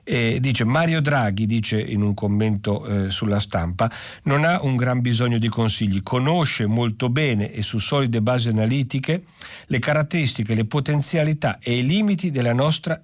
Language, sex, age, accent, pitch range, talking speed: Italian, male, 50-69, native, 115-155 Hz, 160 wpm